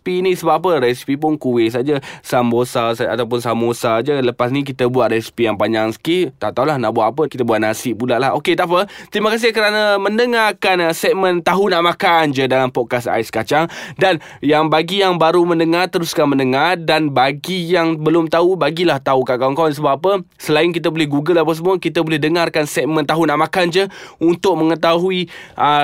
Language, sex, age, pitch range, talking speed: Malay, male, 20-39, 145-180 Hz, 195 wpm